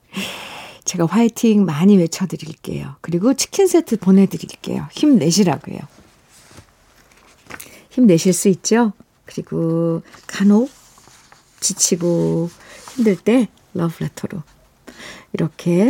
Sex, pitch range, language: female, 170-240 Hz, Korean